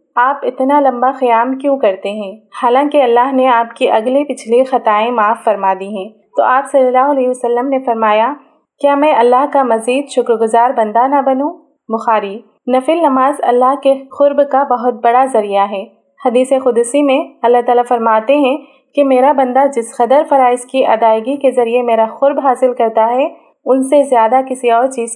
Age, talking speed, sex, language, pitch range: 30-49, 180 wpm, female, Urdu, 225-265 Hz